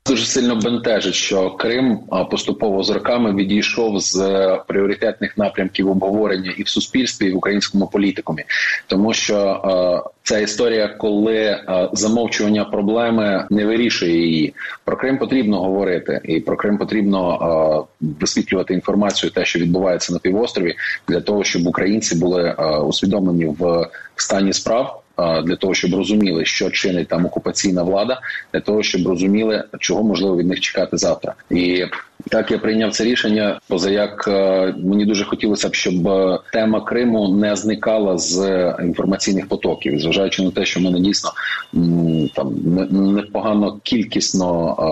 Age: 30-49